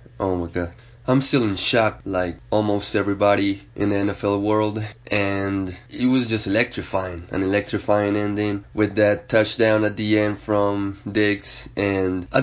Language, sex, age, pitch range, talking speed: English, male, 20-39, 100-120 Hz, 155 wpm